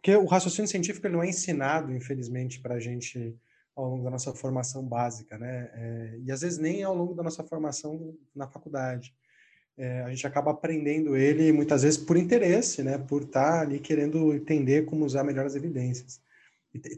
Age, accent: 20-39, Brazilian